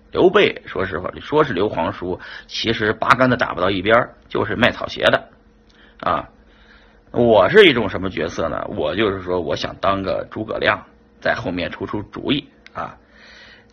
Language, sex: Chinese, male